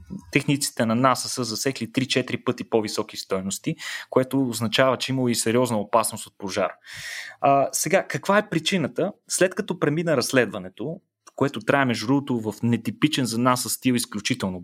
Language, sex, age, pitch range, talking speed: Bulgarian, male, 30-49, 125-170 Hz, 145 wpm